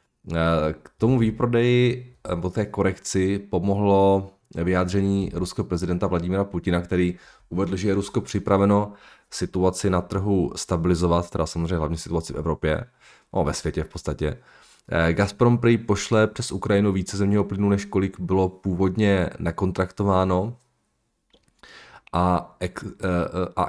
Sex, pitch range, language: male, 85-100 Hz, Czech